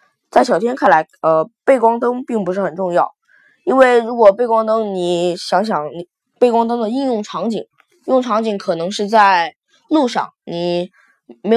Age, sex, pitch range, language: 20-39, female, 185-245 Hz, Chinese